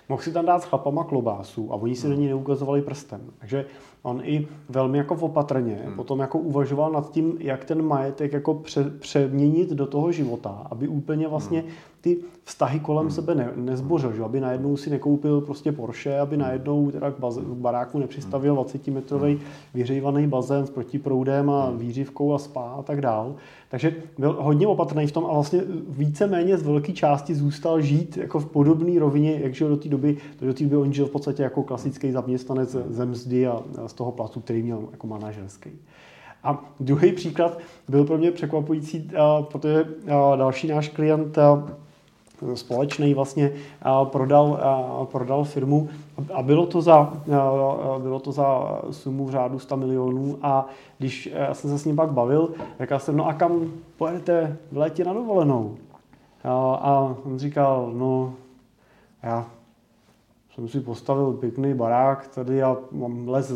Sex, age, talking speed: male, 30-49, 165 wpm